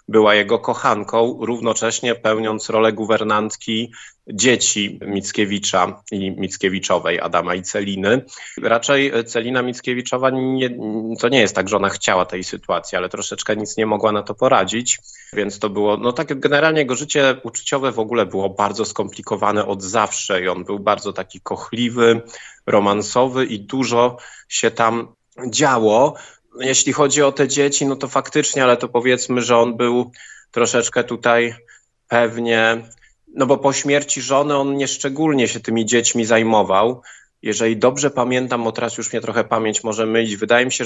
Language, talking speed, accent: Polish, 155 wpm, native